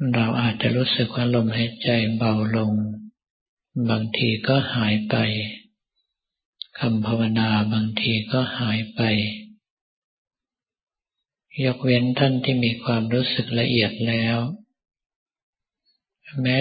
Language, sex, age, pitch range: Thai, male, 50-69, 110-130 Hz